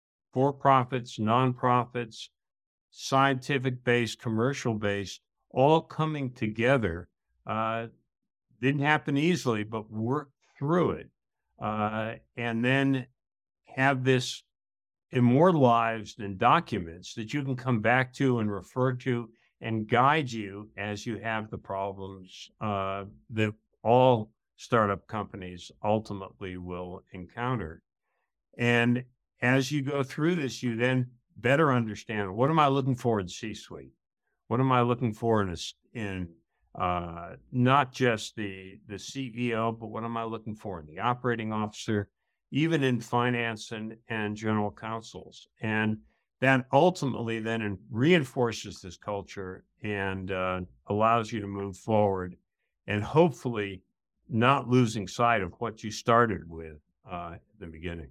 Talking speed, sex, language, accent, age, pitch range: 130 wpm, male, English, American, 60-79, 100-125 Hz